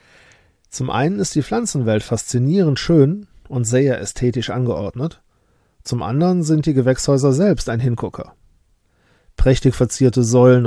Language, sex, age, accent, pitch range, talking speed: German, male, 40-59, German, 110-140 Hz, 125 wpm